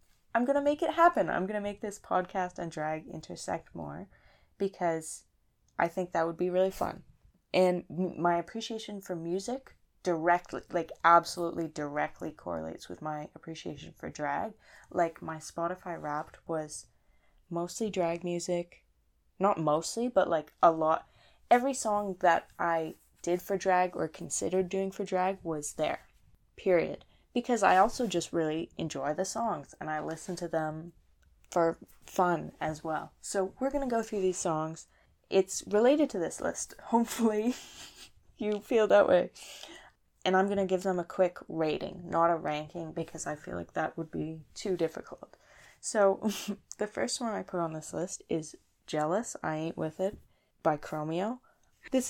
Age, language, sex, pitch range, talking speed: 20-39, English, female, 160-200 Hz, 160 wpm